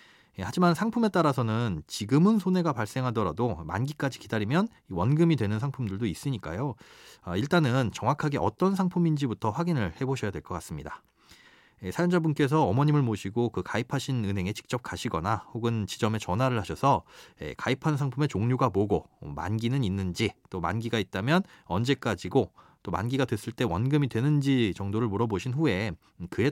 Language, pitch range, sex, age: Korean, 105-155 Hz, male, 30-49